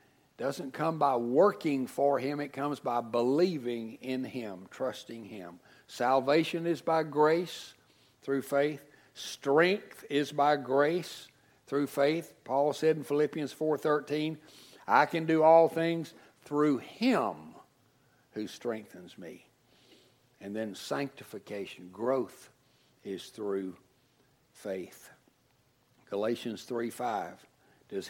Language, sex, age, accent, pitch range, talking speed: English, male, 60-79, American, 120-150 Hz, 110 wpm